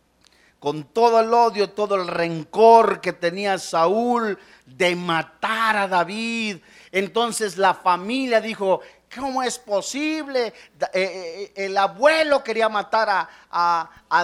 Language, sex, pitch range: Spanish, male, 160-260 Hz